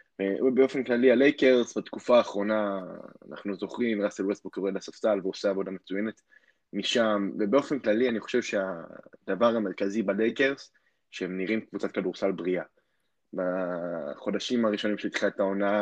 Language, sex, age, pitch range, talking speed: Hebrew, male, 20-39, 100-115 Hz, 120 wpm